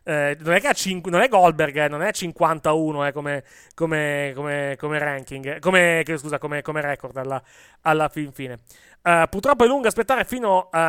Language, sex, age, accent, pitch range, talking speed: Italian, male, 30-49, native, 145-180 Hz, 195 wpm